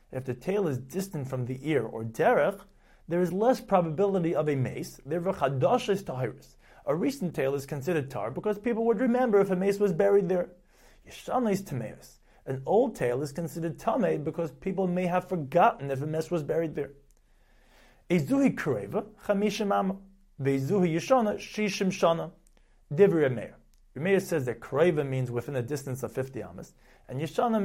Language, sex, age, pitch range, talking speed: English, male, 30-49, 135-190 Hz, 160 wpm